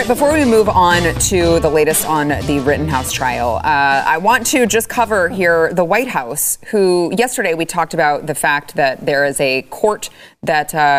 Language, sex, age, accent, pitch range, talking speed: English, female, 20-39, American, 140-180 Hz, 195 wpm